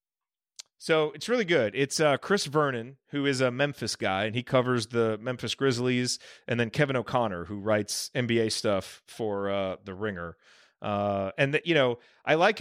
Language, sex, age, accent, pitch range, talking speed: English, male, 30-49, American, 110-145 Hz, 180 wpm